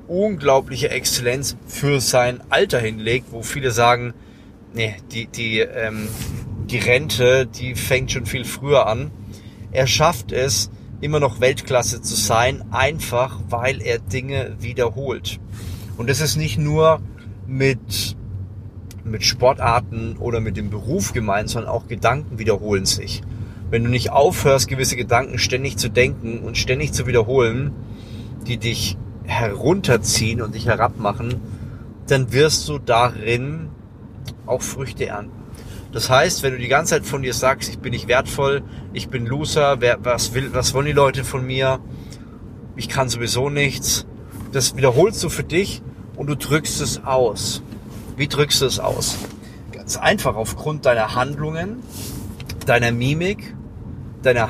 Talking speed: 145 wpm